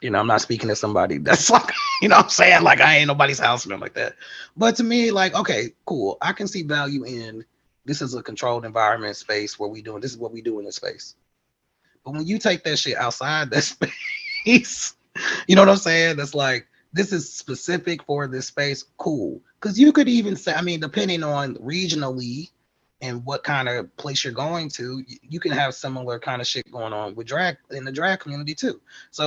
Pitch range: 130-170 Hz